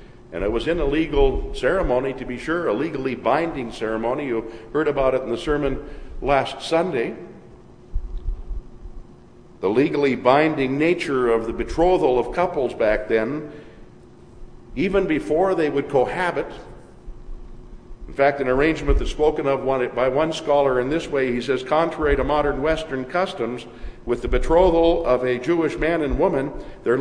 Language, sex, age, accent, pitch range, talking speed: English, male, 50-69, American, 120-160 Hz, 155 wpm